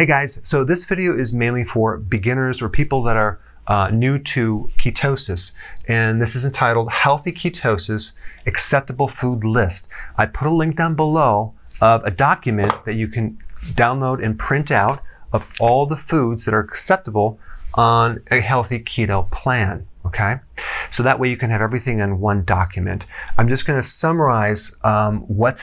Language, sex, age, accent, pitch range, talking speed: English, male, 30-49, American, 105-130 Hz, 165 wpm